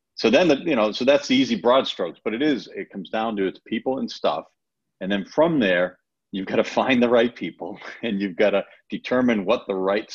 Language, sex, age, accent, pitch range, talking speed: English, male, 50-69, American, 95-115 Hz, 235 wpm